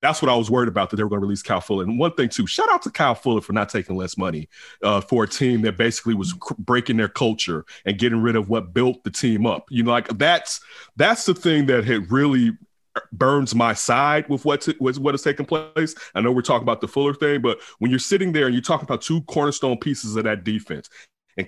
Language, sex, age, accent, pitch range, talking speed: English, male, 30-49, American, 120-150 Hz, 255 wpm